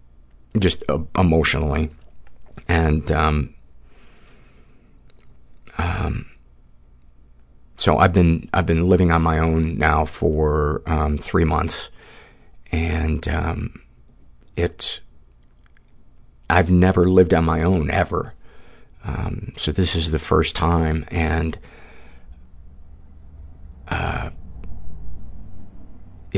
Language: English